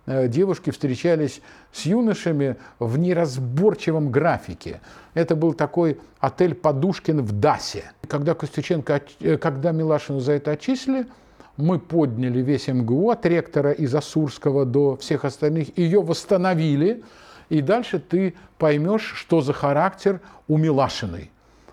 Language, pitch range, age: Russian, 125-175 Hz, 50-69